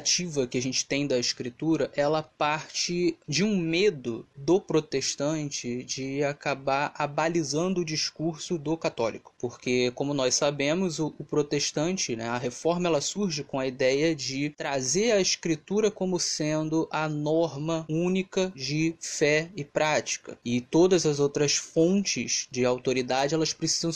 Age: 20-39